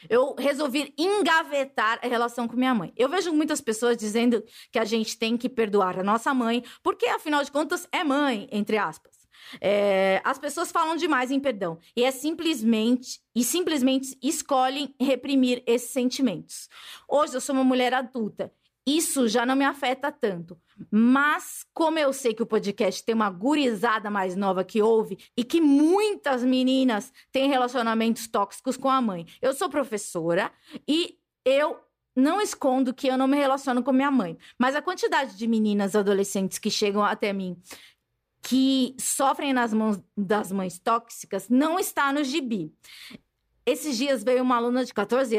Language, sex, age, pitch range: Portuguese, female, 20-39, 225-280 Hz